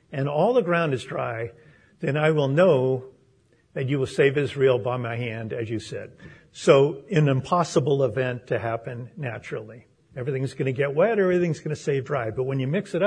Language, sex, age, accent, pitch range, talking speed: English, male, 50-69, American, 130-175 Hz, 200 wpm